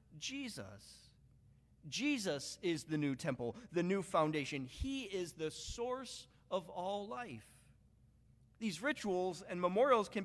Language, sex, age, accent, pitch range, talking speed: English, male, 40-59, American, 140-205 Hz, 125 wpm